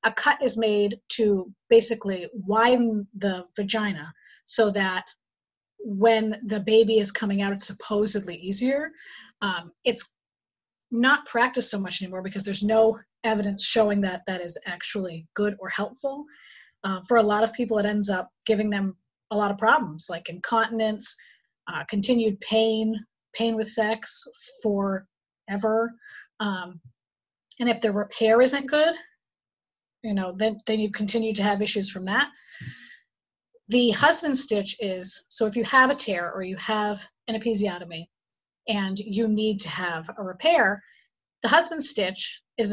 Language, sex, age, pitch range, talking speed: English, female, 30-49, 195-235 Hz, 150 wpm